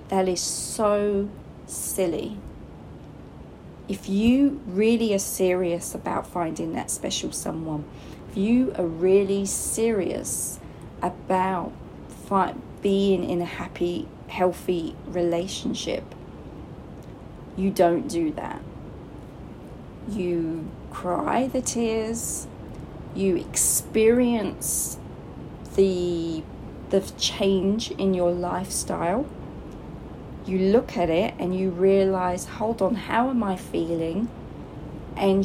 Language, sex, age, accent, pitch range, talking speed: English, female, 30-49, British, 175-215 Hz, 95 wpm